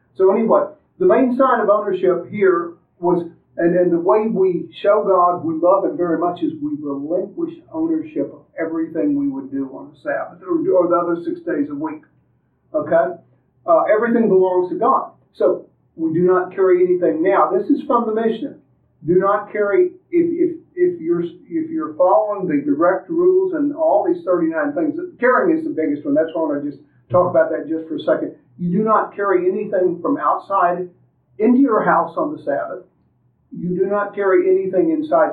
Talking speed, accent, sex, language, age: 195 wpm, American, male, English, 50-69